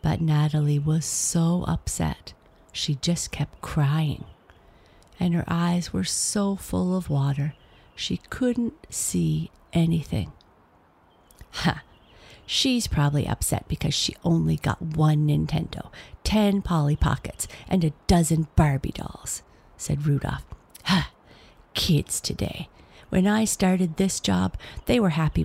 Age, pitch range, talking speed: 50-69, 145-185 Hz, 125 wpm